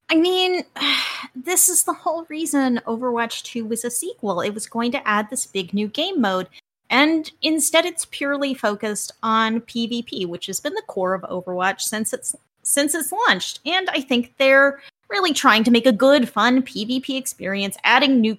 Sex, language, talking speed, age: female, English, 185 wpm, 30-49